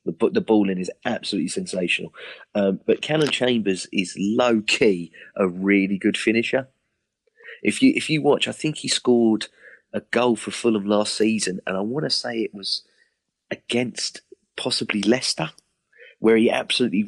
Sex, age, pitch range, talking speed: male, 30-49, 100-150 Hz, 155 wpm